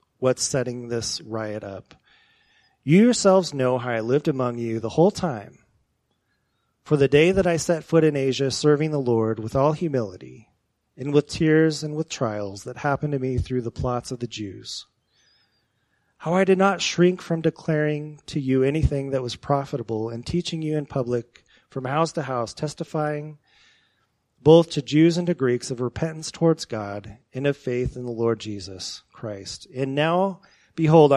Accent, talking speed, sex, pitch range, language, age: American, 175 wpm, male, 120-160 Hz, English, 30-49